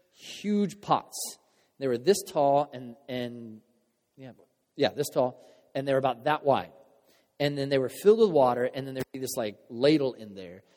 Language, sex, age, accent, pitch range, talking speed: English, male, 30-49, American, 130-170 Hz, 195 wpm